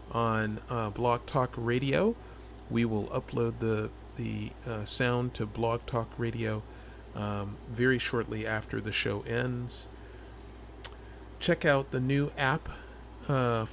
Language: English